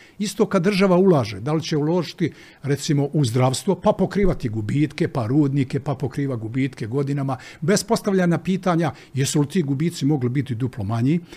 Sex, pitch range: male, 135-190 Hz